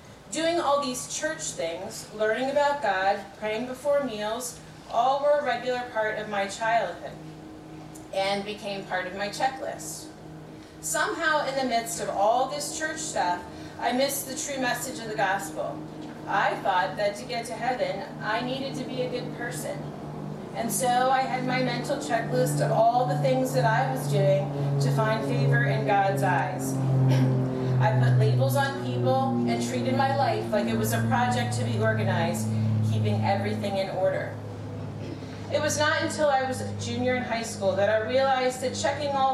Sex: female